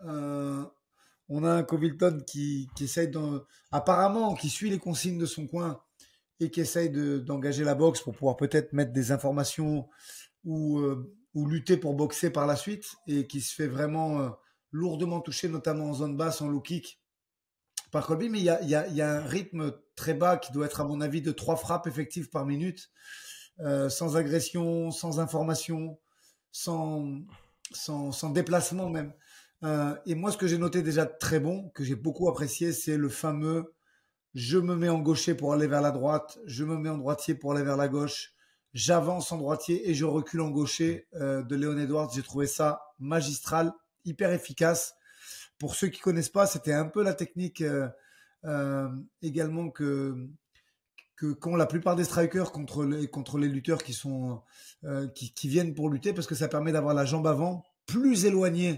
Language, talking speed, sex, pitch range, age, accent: French, 190 wpm, male, 145-170 Hz, 30-49, French